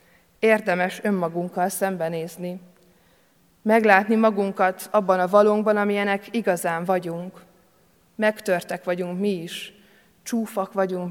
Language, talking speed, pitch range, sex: Hungarian, 90 wpm, 180-215 Hz, female